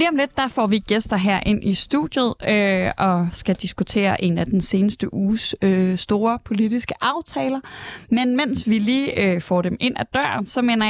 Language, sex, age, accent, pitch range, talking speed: Danish, female, 20-39, native, 190-235 Hz, 195 wpm